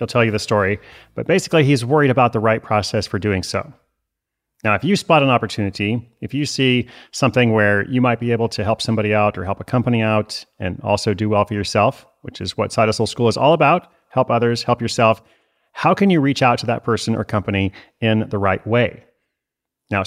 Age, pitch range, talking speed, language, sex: 30-49, 105-130 Hz, 220 wpm, English, male